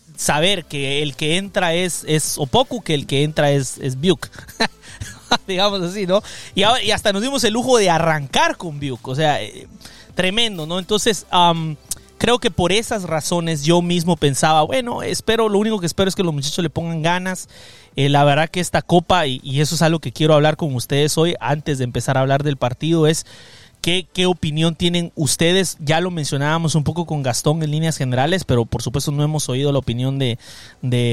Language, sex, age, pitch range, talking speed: Spanish, male, 30-49, 145-185 Hz, 205 wpm